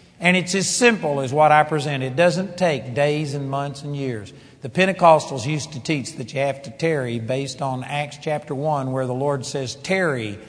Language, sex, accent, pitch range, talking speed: English, male, American, 130-170 Hz, 205 wpm